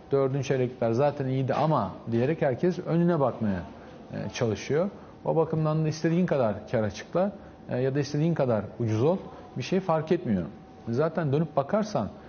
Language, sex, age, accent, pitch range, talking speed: Turkish, male, 40-59, native, 115-160 Hz, 145 wpm